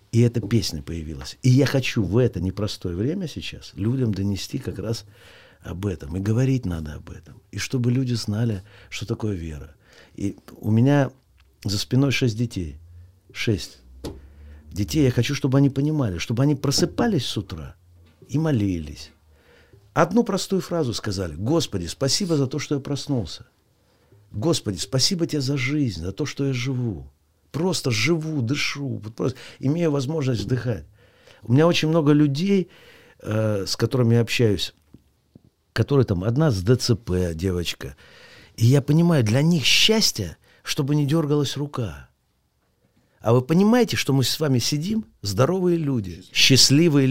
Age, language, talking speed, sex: 50-69, Russian, 145 wpm, male